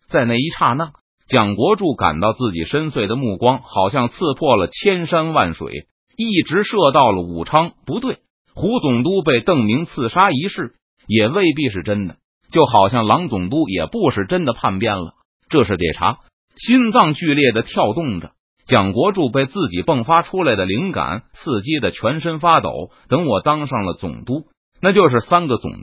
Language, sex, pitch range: Chinese, male, 105-165 Hz